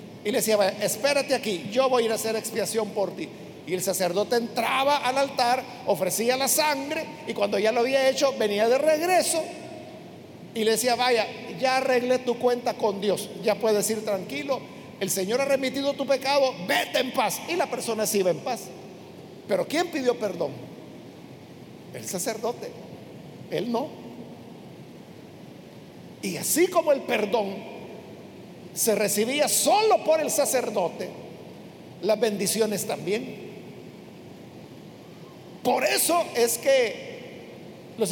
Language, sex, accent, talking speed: Spanish, male, Mexican, 140 wpm